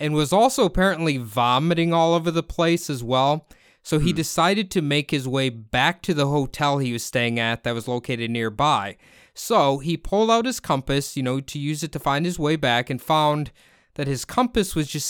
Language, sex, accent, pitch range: English, male, American, 130-170 Hz